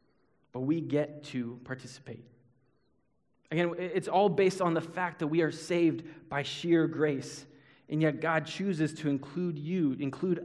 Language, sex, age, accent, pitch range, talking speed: English, male, 20-39, American, 130-160 Hz, 155 wpm